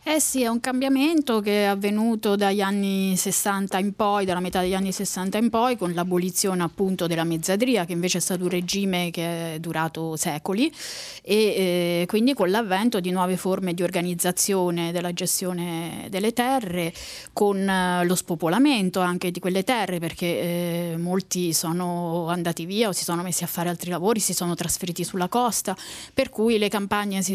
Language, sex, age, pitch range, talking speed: Italian, female, 30-49, 180-225 Hz, 175 wpm